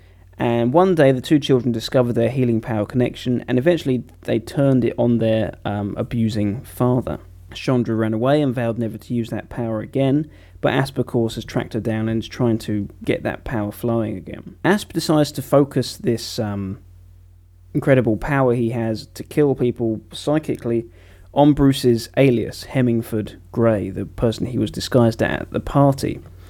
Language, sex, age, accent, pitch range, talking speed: English, male, 20-39, British, 110-135 Hz, 175 wpm